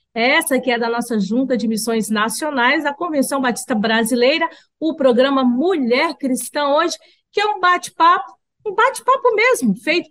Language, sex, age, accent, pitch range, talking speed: Portuguese, female, 40-59, Brazilian, 225-310 Hz, 155 wpm